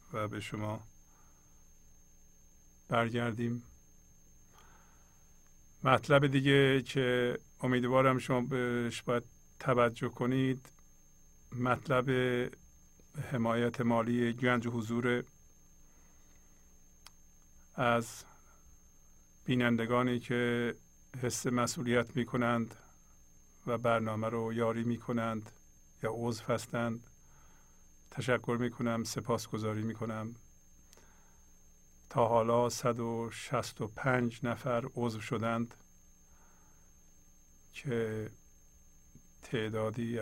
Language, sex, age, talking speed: English, male, 50-69, 70 wpm